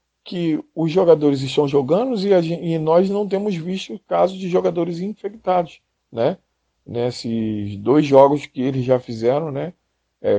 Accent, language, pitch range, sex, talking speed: Brazilian, Portuguese, 120-170 Hz, male, 155 wpm